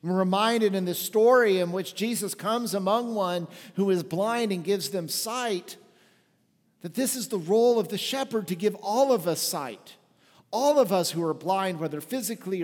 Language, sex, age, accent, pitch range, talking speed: English, male, 50-69, American, 160-210 Hz, 190 wpm